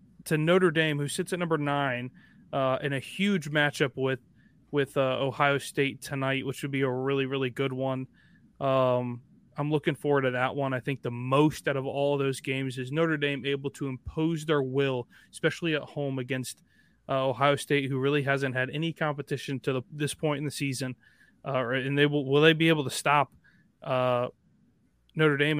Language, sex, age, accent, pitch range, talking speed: English, male, 20-39, American, 135-155 Hz, 195 wpm